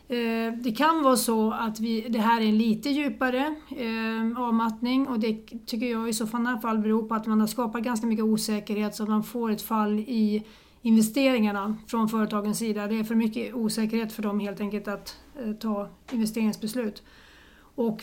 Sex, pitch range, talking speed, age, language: female, 215-240 Hz, 190 wpm, 30-49, Swedish